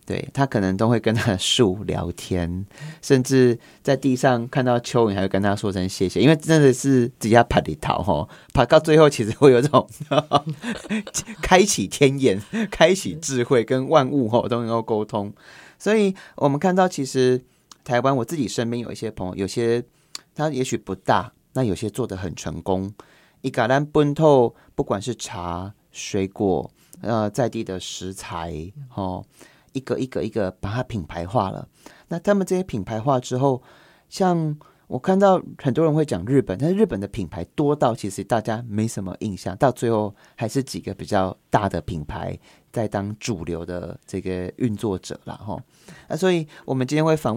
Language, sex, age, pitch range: Chinese, male, 30-49, 100-140 Hz